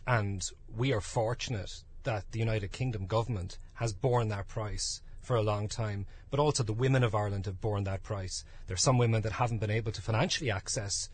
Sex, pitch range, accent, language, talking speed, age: male, 105-135 Hz, Irish, English, 205 wpm, 30-49